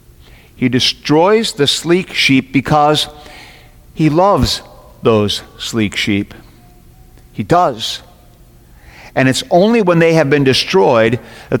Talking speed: 115 wpm